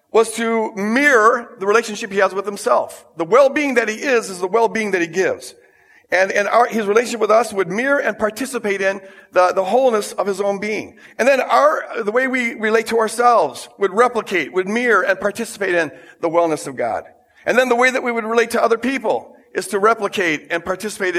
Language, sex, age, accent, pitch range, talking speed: English, male, 50-69, American, 180-230 Hz, 210 wpm